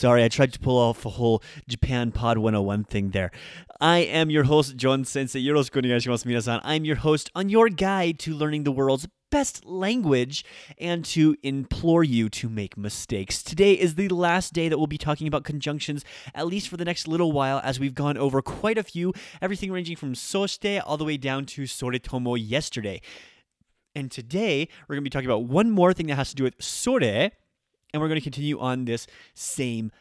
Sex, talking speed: male, 205 wpm